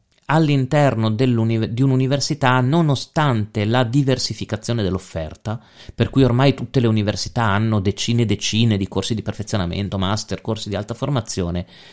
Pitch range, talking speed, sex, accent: 100-130 Hz, 130 wpm, male, native